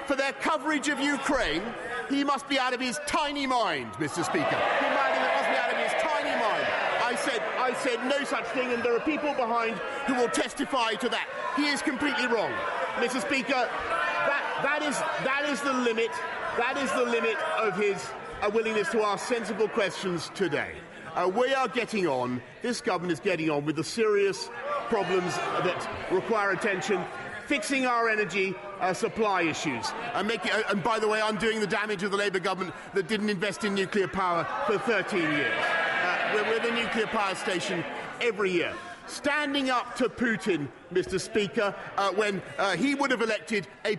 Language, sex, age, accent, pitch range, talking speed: English, male, 40-59, British, 205-275 Hz, 175 wpm